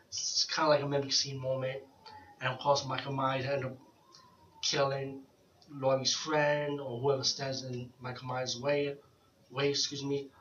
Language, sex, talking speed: English, male, 160 wpm